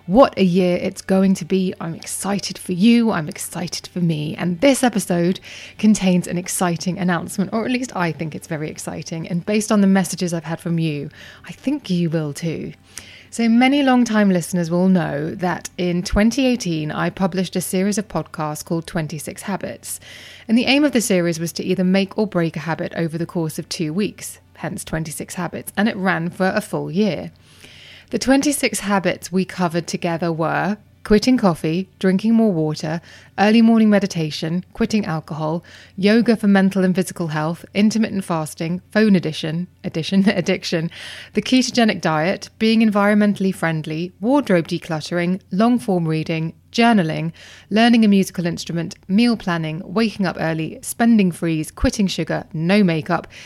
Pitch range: 170-205 Hz